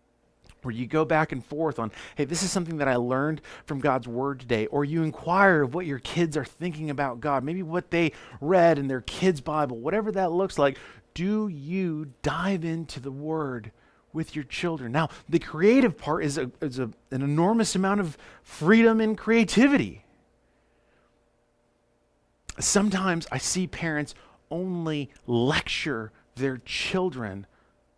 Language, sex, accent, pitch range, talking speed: English, male, American, 130-190 Hz, 150 wpm